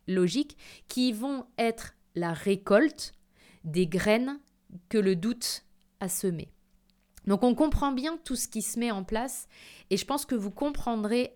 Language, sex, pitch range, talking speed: French, female, 200-250 Hz, 160 wpm